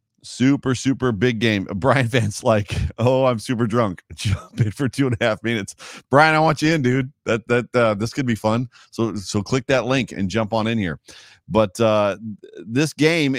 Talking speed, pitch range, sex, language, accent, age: 205 wpm, 100-125 Hz, male, English, American, 40-59